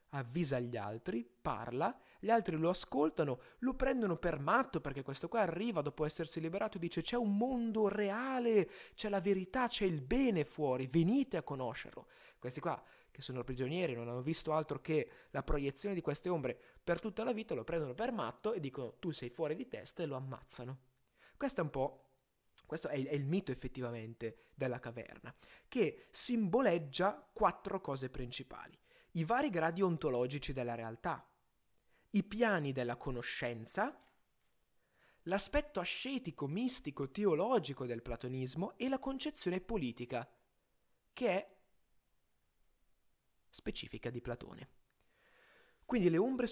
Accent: native